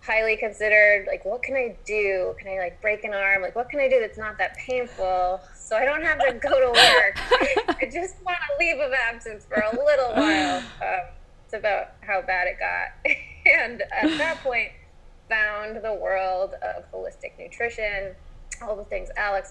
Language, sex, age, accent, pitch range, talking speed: English, female, 20-39, American, 185-260 Hz, 190 wpm